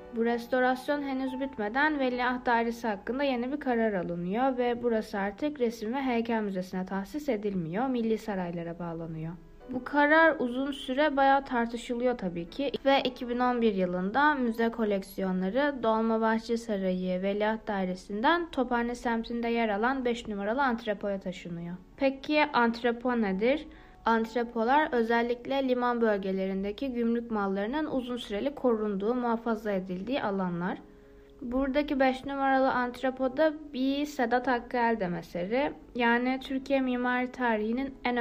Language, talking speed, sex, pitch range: Turkish, 120 wpm, female, 200-255 Hz